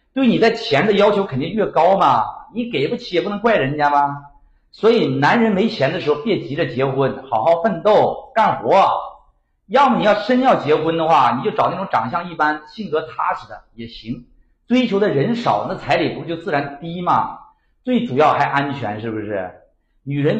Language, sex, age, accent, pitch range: Chinese, male, 50-69, native, 140-220 Hz